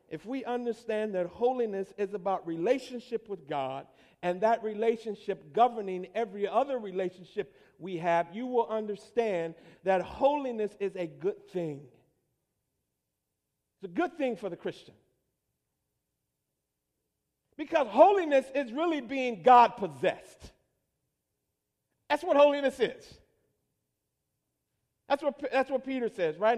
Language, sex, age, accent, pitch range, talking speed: English, male, 50-69, American, 185-260 Hz, 115 wpm